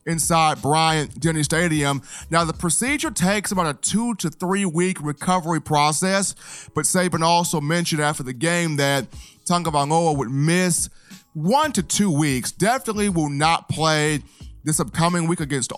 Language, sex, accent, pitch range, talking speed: English, male, American, 145-170 Hz, 140 wpm